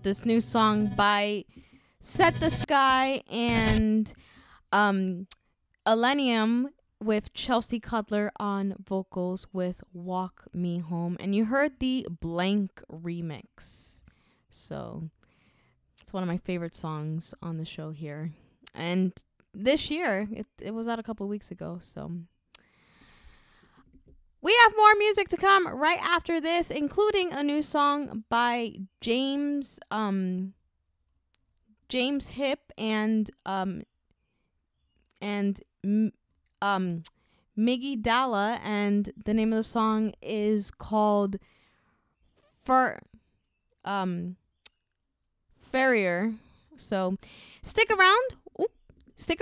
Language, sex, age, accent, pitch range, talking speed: English, female, 20-39, American, 185-260 Hz, 105 wpm